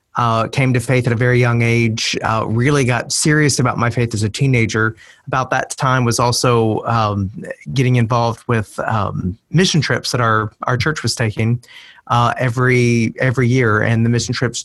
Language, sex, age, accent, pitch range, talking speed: English, male, 30-49, American, 115-130 Hz, 185 wpm